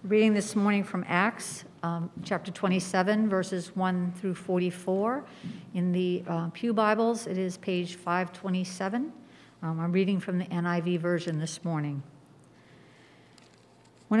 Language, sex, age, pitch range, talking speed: English, female, 50-69, 175-205 Hz, 130 wpm